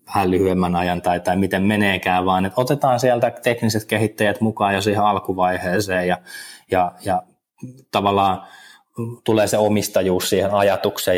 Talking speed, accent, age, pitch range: 130 wpm, native, 20-39, 95-115 Hz